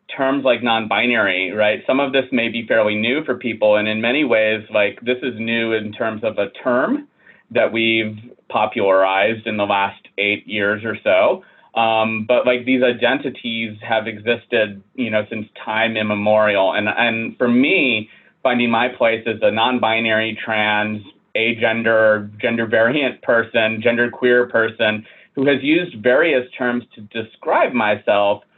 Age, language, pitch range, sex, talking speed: 30-49, English, 110-130 Hz, male, 155 wpm